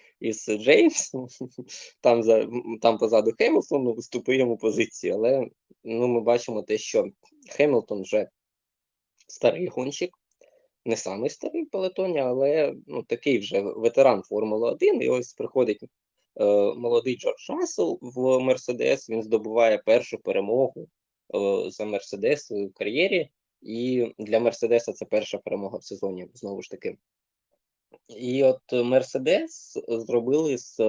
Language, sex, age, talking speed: Ukrainian, male, 20-39, 120 wpm